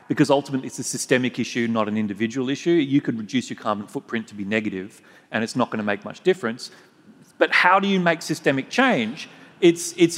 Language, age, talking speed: English, 40-59, 205 wpm